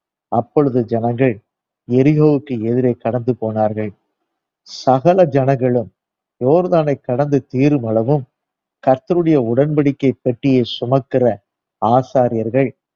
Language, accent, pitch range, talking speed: Tamil, native, 115-145 Hz, 80 wpm